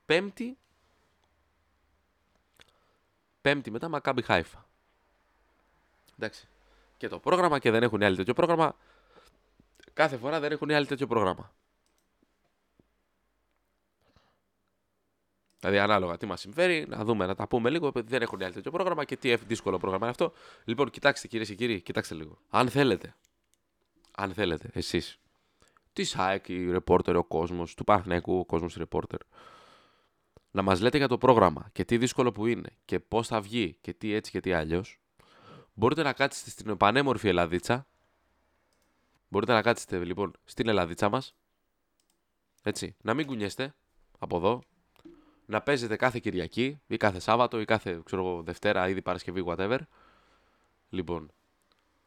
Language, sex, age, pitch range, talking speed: Greek, male, 20-39, 90-120 Hz, 140 wpm